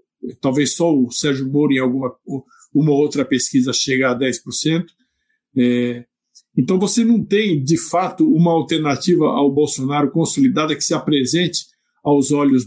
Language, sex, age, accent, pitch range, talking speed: Portuguese, male, 50-69, Brazilian, 130-170 Hz, 135 wpm